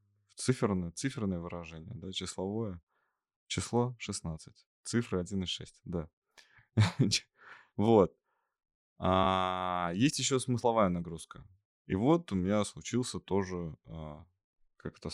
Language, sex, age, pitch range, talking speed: Russian, male, 20-39, 90-115 Hz, 95 wpm